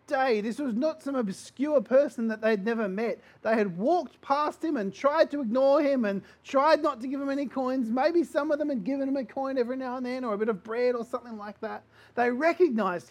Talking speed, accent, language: 240 wpm, Australian, English